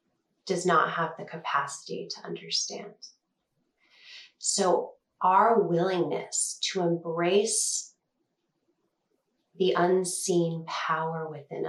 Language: English